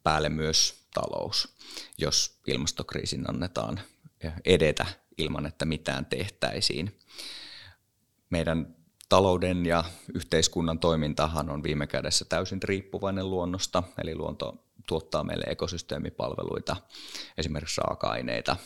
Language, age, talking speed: Finnish, 30-49, 95 wpm